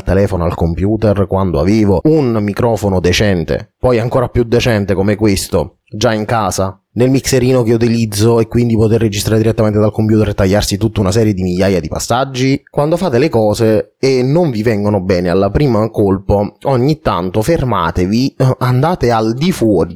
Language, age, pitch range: Italian, 20-39, 100-125 Hz